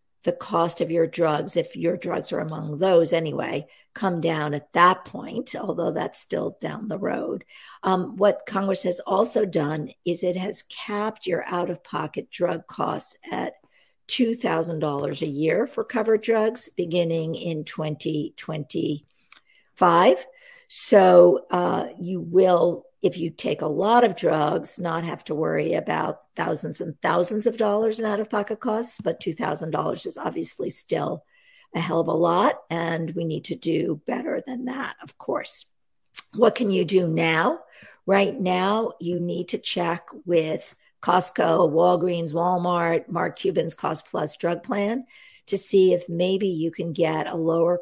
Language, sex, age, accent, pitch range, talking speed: English, female, 50-69, American, 165-215 Hz, 150 wpm